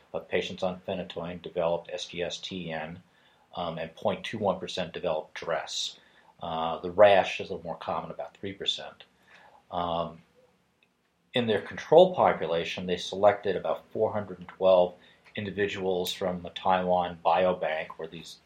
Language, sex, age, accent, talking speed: English, male, 40-59, American, 120 wpm